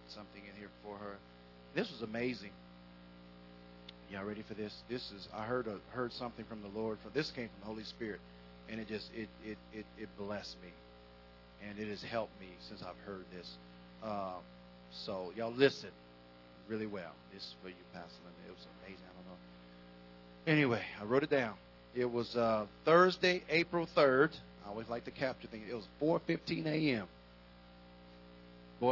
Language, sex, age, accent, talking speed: English, male, 40-59, American, 185 wpm